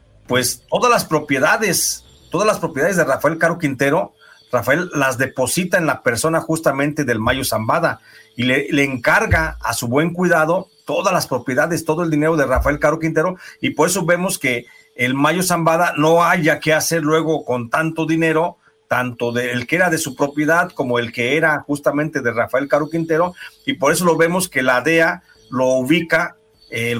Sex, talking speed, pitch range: male, 180 wpm, 130-170 Hz